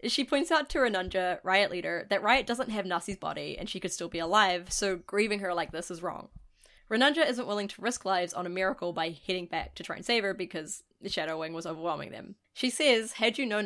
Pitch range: 175-230 Hz